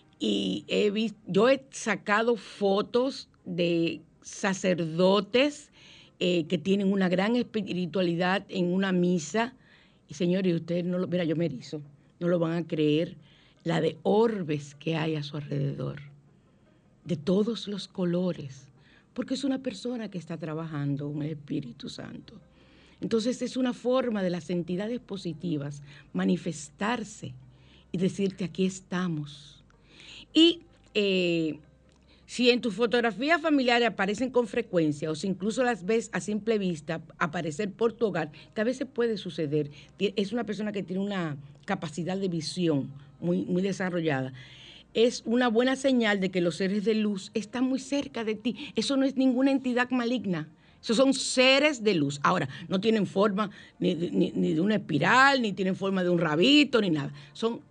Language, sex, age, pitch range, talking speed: Spanish, female, 50-69, 160-225 Hz, 155 wpm